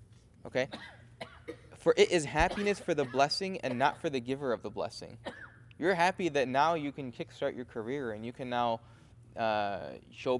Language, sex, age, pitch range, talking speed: English, male, 20-39, 115-155 Hz, 180 wpm